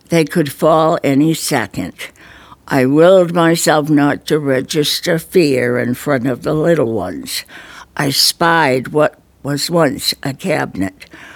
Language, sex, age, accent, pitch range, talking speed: English, female, 60-79, American, 135-165 Hz, 130 wpm